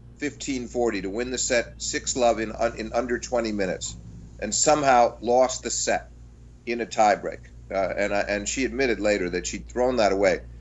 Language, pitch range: English, 95-120 Hz